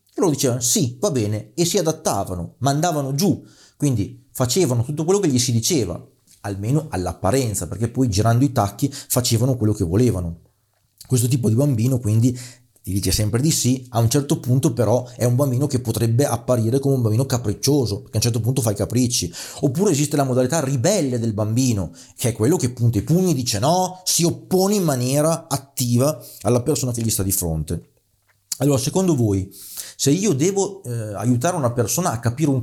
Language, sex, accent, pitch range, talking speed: Italian, male, native, 115-175 Hz, 190 wpm